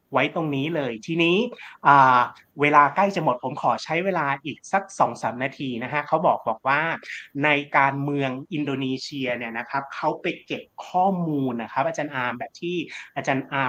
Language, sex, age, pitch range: Thai, male, 30-49, 130-160 Hz